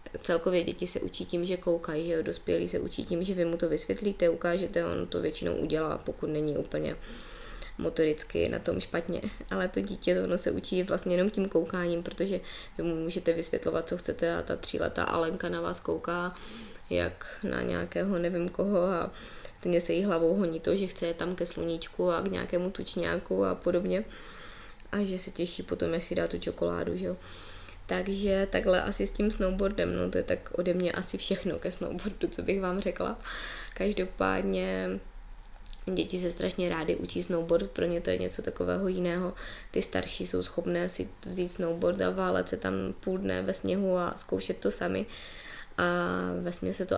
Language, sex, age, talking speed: Czech, female, 20-39, 190 wpm